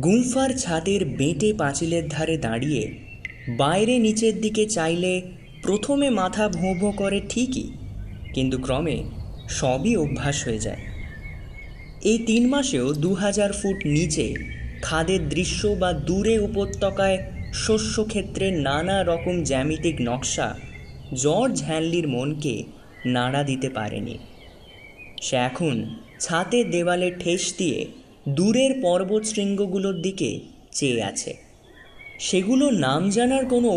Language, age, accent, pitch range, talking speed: Bengali, 20-39, native, 140-210 Hz, 105 wpm